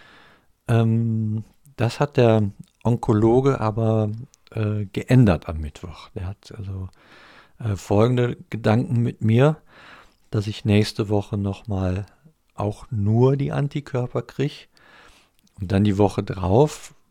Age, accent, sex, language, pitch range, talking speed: 50-69, German, male, German, 95-115 Hz, 110 wpm